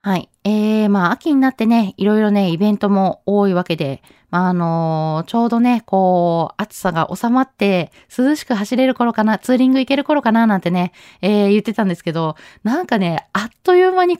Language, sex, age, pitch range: Japanese, female, 20-39, 180-255 Hz